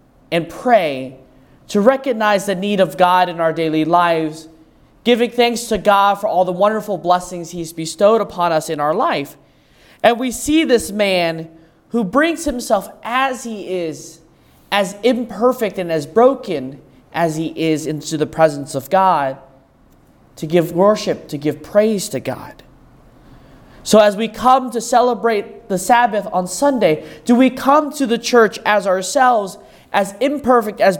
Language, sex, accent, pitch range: English, male, American, 175-240 Hz